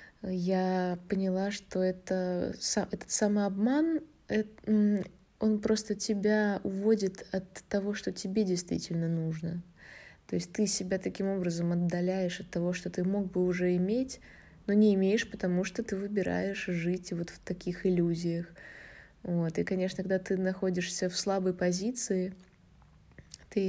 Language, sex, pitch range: Russian, female, 180-205 Hz